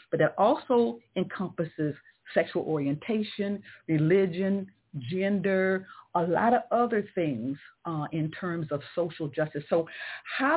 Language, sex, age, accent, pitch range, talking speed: English, female, 50-69, American, 160-210 Hz, 120 wpm